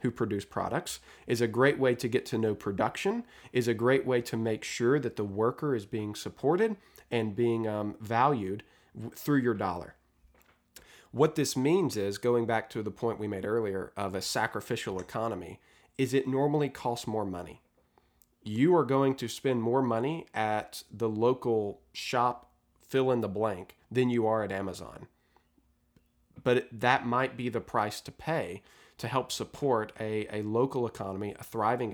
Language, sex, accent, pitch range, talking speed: English, male, American, 105-130 Hz, 170 wpm